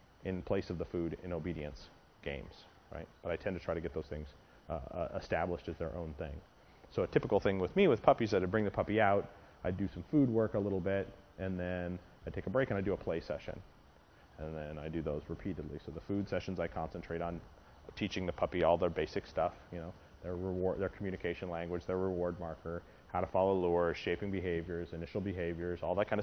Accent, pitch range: American, 85-95 Hz